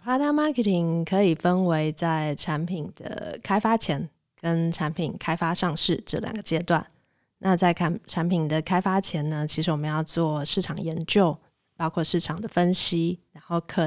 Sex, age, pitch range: female, 20-39, 160-190 Hz